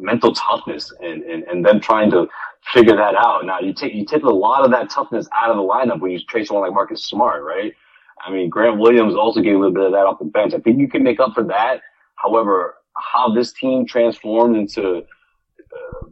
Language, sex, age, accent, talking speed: English, male, 30-49, American, 230 wpm